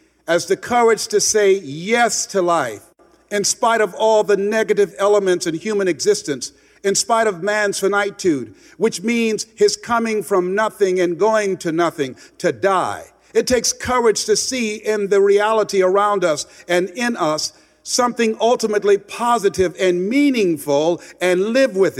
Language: English